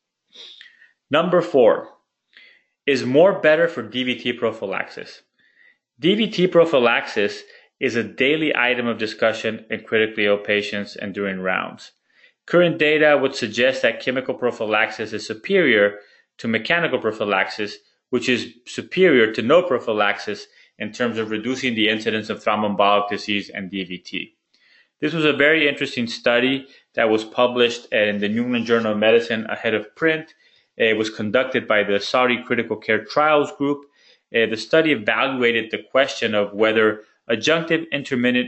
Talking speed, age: 140 wpm, 30-49